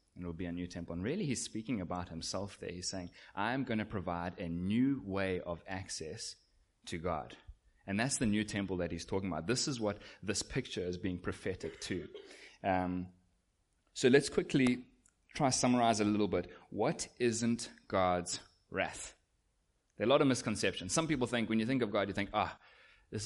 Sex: male